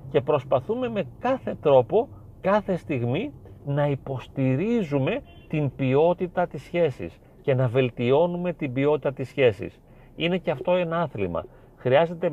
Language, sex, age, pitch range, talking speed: Greek, male, 40-59, 125-175 Hz, 125 wpm